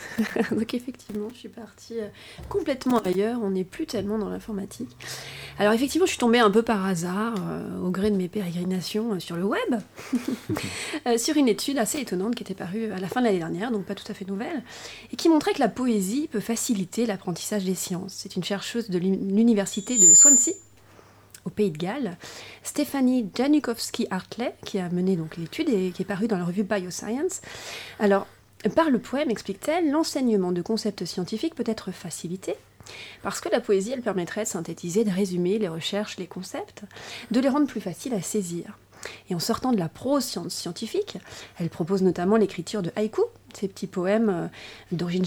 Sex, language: female, French